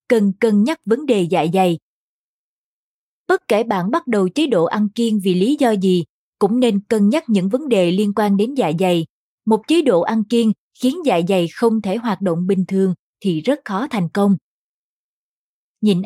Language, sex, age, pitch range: Vietnamese, female, 20-39, 190-240 Hz